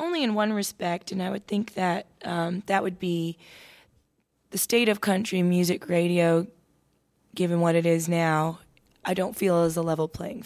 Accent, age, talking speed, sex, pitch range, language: American, 20-39, 180 wpm, female, 160-180 Hz, English